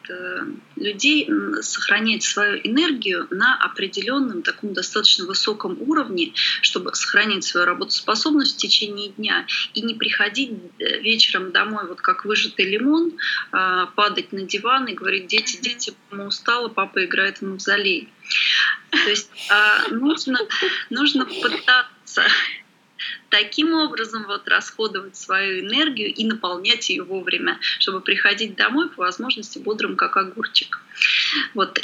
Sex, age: female, 20-39